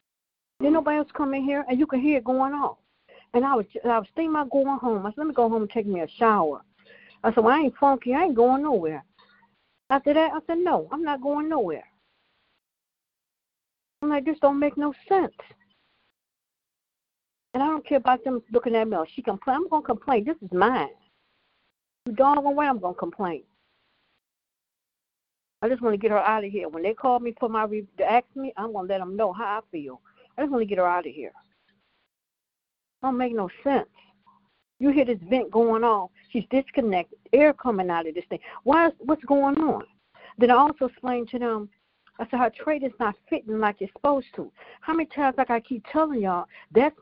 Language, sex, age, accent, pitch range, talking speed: English, female, 60-79, American, 220-285 Hz, 215 wpm